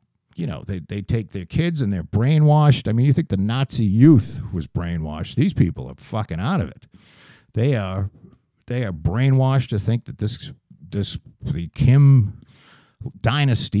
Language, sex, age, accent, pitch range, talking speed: English, male, 50-69, American, 105-135 Hz, 170 wpm